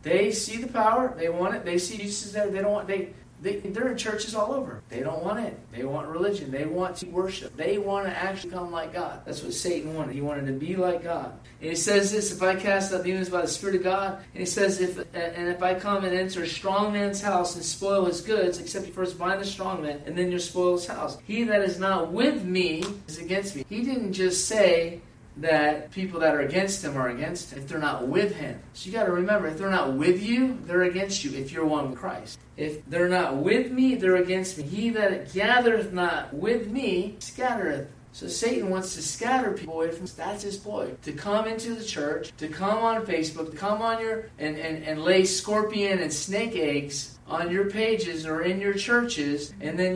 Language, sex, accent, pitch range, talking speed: English, male, American, 155-200 Hz, 230 wpm